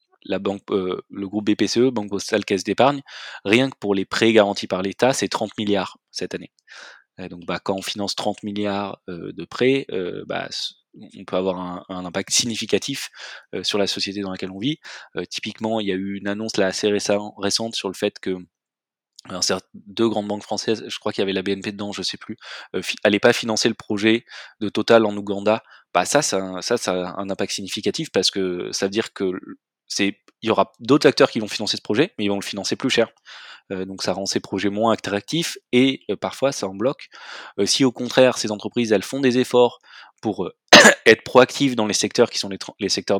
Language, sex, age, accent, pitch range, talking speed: French, male, 20-39, French, 100-115 Hz, 230 wpm